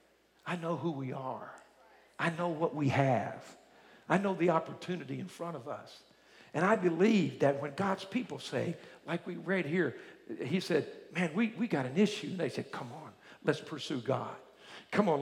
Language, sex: English, male